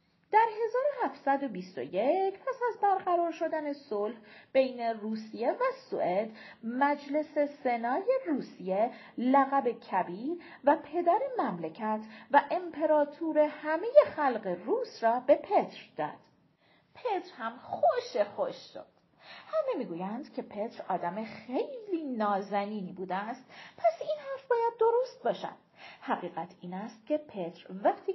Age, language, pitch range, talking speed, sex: 40-59, Persian, 215-350 Hz, 115 wpm, female